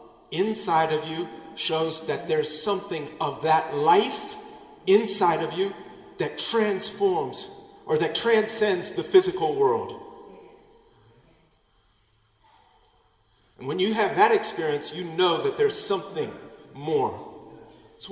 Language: English